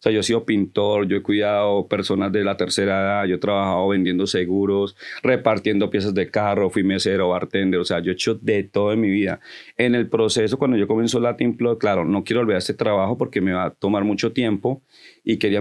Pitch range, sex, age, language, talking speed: 95-115 Hz, male, 40-59, Spanish, 225 wpm